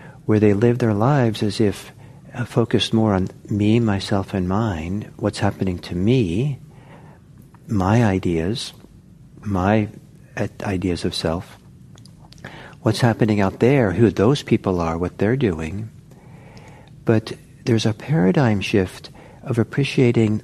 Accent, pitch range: American, 100-135 Hz